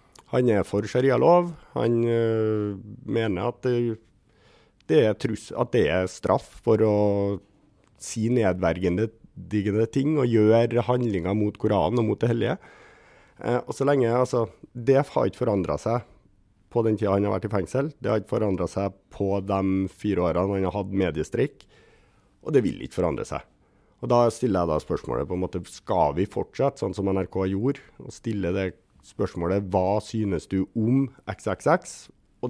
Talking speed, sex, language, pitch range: 175 wpm, male, English, 90-115 Hz